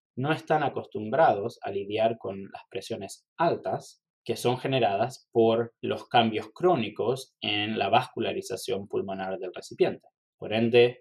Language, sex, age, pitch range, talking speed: Spanish, male, 20-39, 100-140 Hz, 130 wpm